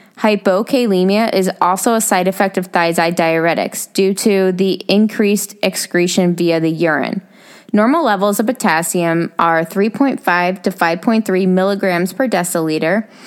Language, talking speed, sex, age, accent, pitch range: English, 125 wpm, female, 20-39, American, 180-220 Hz